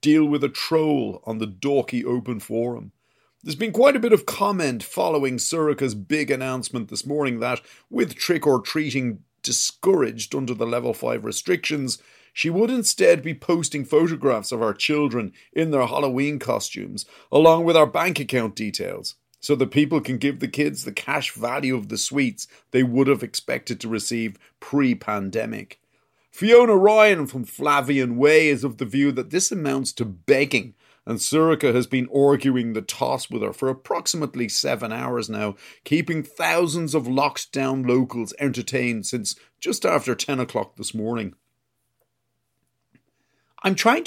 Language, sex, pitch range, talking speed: English, male, 120-155 Hz, 155 wpm